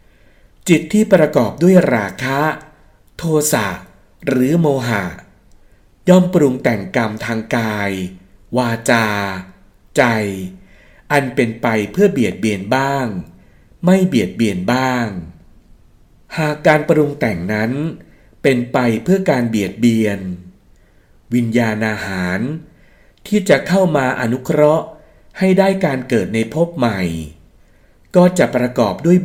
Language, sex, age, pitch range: Thai, male, 60-79, 100-155 Hz